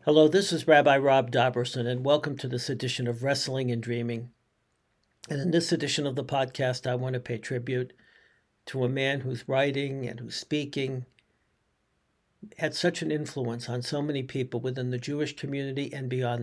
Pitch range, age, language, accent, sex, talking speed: 125-140 Hz, 60-79, English, American, male, 180 wpm